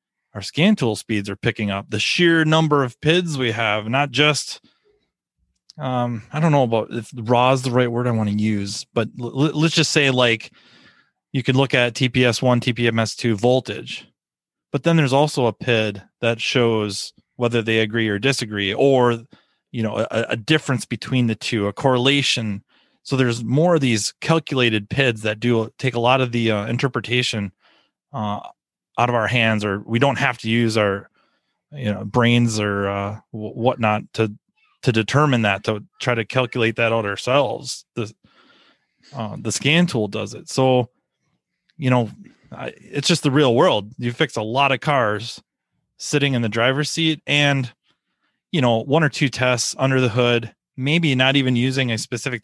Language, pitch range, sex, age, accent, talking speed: English, 110-135 Hz, male, 30-49, American, 180 wpm